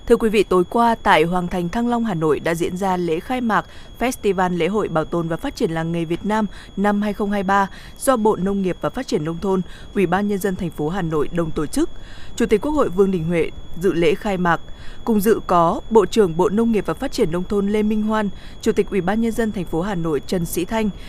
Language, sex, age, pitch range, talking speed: Vietnamese, female, 20-39, 170-220 Hz, 260 wpm